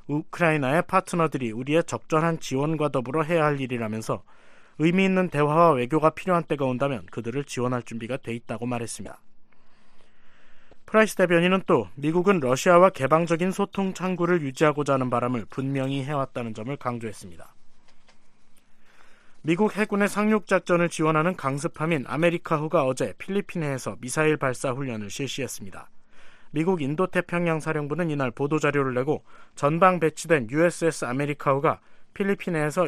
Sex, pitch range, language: male, 130-175 Hz, Korean